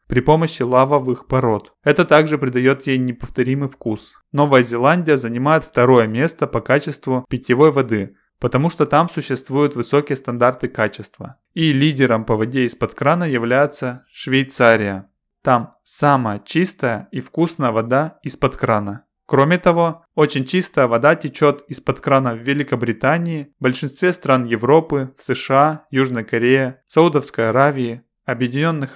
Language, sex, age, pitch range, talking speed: Russian, male, 20-39, 120-150 Hz, 130 wpm